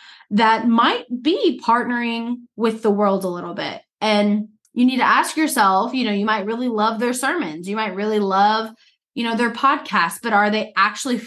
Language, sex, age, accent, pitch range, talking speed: English, female, 20-39, American, 205-245 Hz, 190 wpm